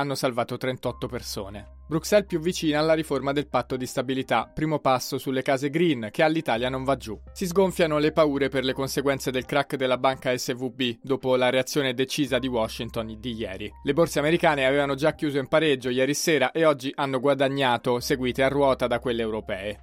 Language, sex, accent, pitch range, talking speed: Italian, male, native, 125-155 Hz, 190 wpm